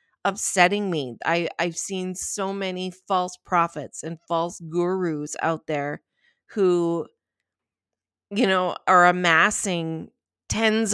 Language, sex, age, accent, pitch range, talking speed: English, female, 30-49, American, 165-210 Hz, 110 wpm